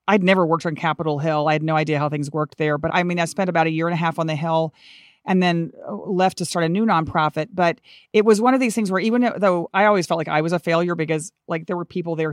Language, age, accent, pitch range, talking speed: English, 40-59, American, 160-200 Hz, 290 wpm